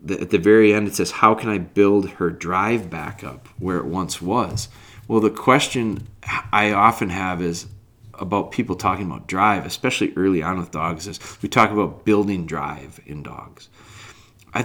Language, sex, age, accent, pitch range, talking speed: English, male, 30-49, American, 90-110 Hz, 180 wpm